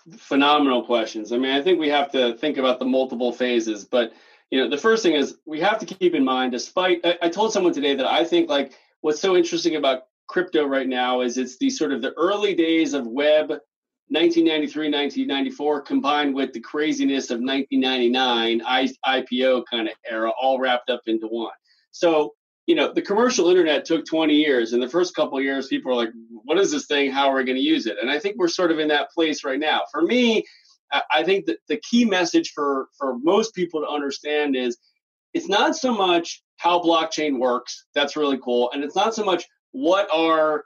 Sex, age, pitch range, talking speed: male, 30-49, 130-180 Hz, 210 wpm